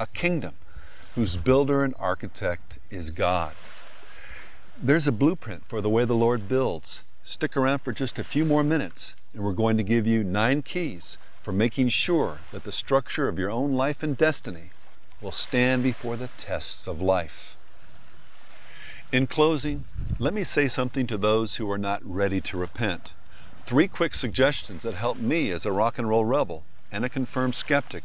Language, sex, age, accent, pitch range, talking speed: English, male, 50-69, American, 100-140 Hz, 175 wpm